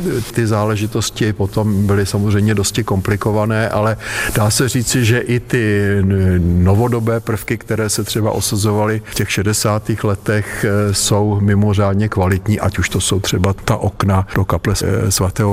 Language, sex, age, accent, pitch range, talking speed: Czech, male, 50-69, native, 95-105 Hz, 145 wpm